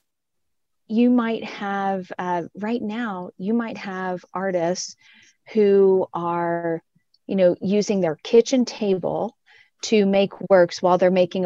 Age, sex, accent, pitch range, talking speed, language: 30-49, female, American, 180-215 Hz, 125 wpm, English